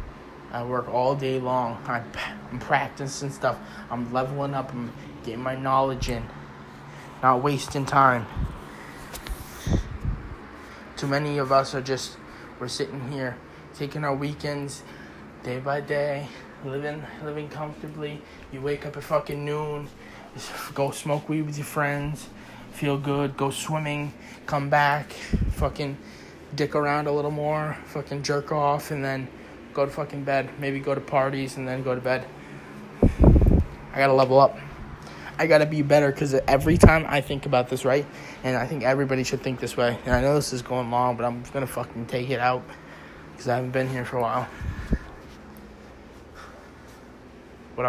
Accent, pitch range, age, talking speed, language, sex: American, 115-145 Hz, 20-39, 160 wpm, English, male